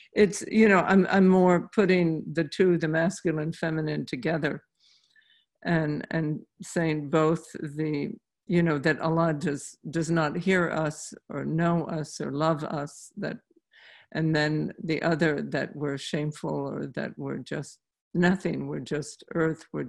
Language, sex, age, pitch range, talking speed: English, female, 50-69, 155-185 Hz, 150 wpm